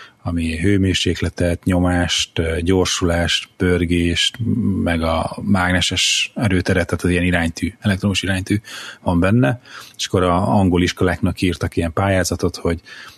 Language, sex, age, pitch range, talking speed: Hungarian, male, 30-49, 85-100 Hz, 115 wpm